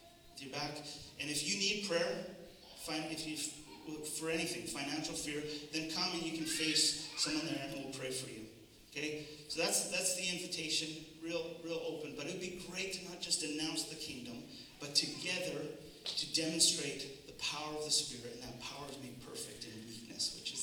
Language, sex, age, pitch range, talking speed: English, male, 40-59, 120-150 Hz, 190 wpm